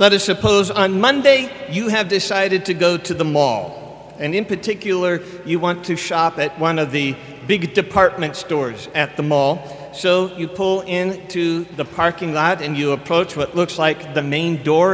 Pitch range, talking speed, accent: 145-185 Hz, 185 wpm, American